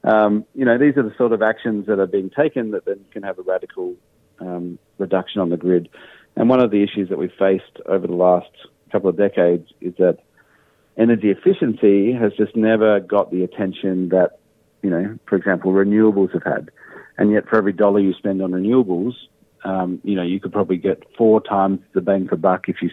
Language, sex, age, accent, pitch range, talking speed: English, male, 40-59, Australian, 90-110 Hz, 210 wpm